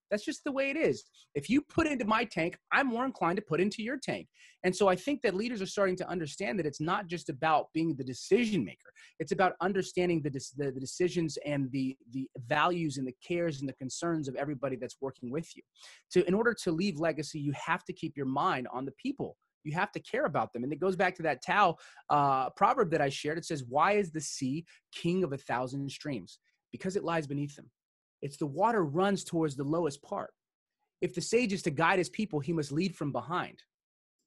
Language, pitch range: English, 140-190 Hz